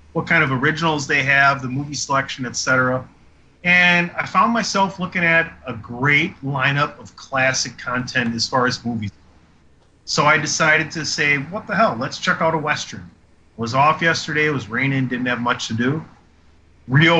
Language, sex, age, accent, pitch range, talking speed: English, male, 30-49, American, 120-150 Hz, 180 wpm